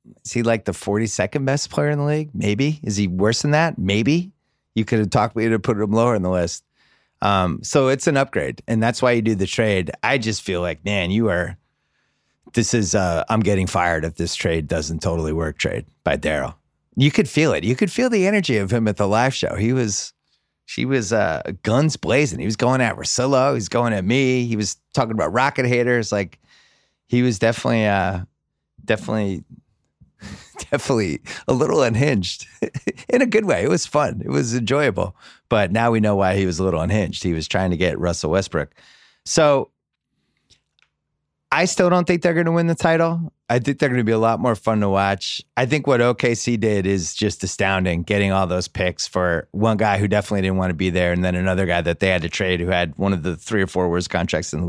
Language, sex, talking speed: English, male, 225 wpm